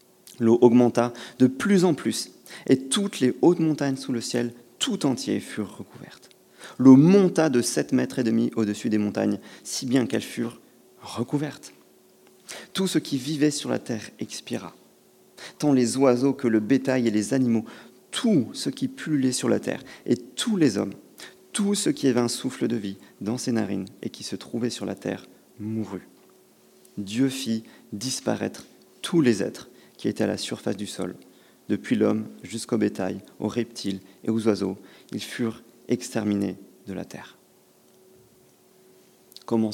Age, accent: 40-59, French